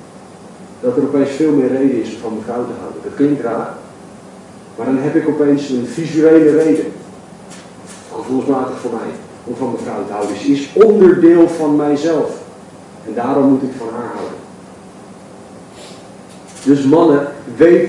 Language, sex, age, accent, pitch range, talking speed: Dutch, male, 40-59, Dutch, 130-155 Hz, 160 wpm